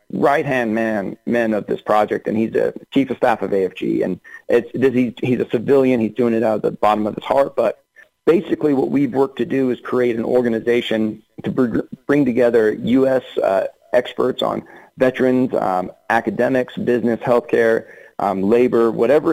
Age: 40-59